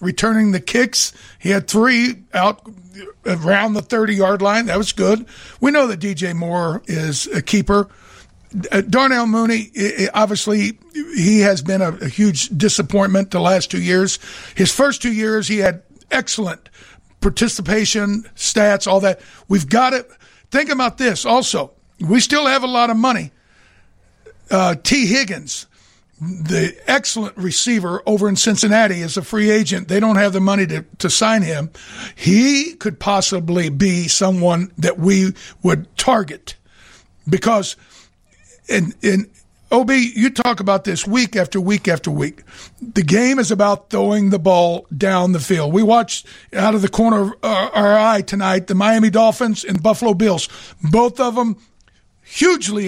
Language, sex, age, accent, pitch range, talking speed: English, male, 60-79, American, 190-230 Hz, 155 wpm